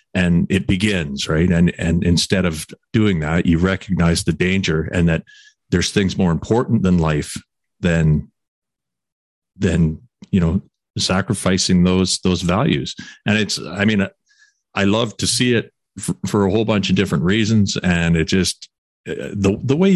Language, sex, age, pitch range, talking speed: English, male, 40-59, 85-100 Hz, 160 wpm